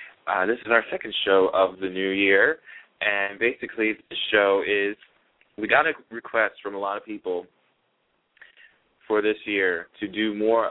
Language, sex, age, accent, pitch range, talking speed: English, male, 20-39, American, 100-115 Hz, 170 wpm